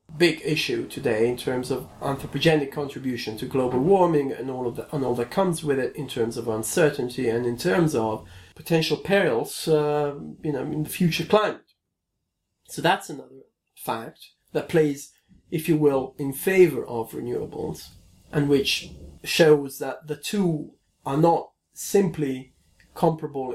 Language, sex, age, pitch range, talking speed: English, male, 40-59, 130-180 Hz, 155 wpm